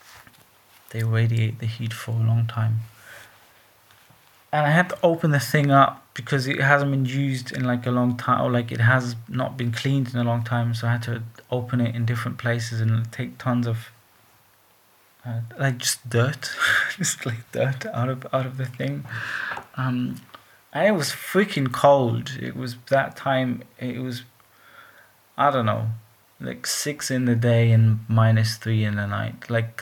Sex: male